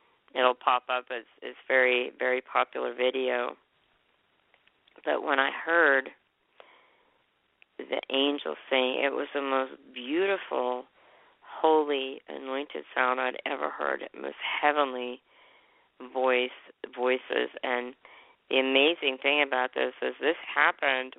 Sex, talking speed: female, 115 wpm